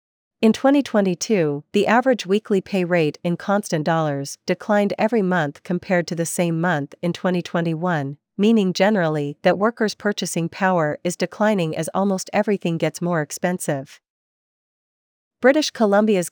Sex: female